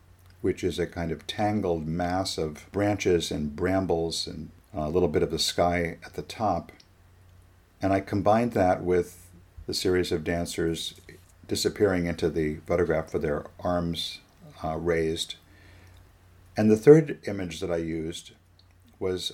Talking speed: 145 wpm